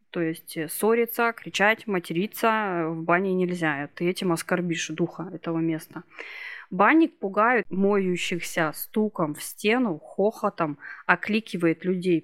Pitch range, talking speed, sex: 170-205 Hz, 115 wpm, female